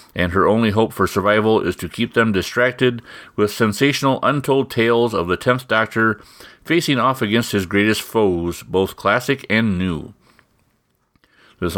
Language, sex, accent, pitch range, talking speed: English, male, American, 105-130 Hz, 155 wpm